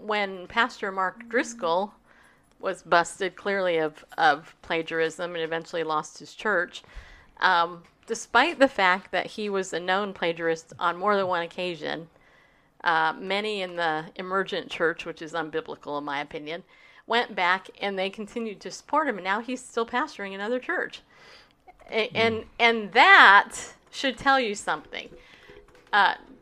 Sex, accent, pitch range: female, American, 170-235 Hz